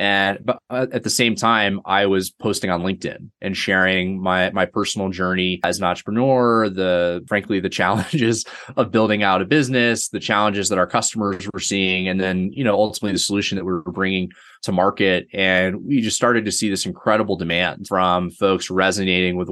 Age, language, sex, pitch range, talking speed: 20-39, English, male, 90-100 Hz, 190 wpm